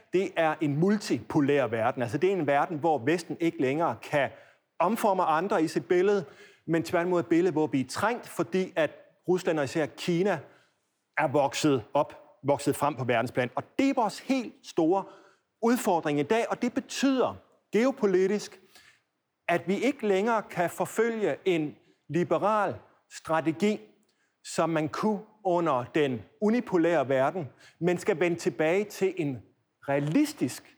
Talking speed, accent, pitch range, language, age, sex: 150 wpm, native, 155-205 Hz, Danish, 30-49, male